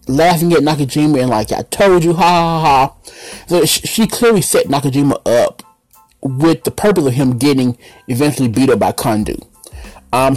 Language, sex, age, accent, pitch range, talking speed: English, male, 30-49, American, 125-165 Hz, 170 wpm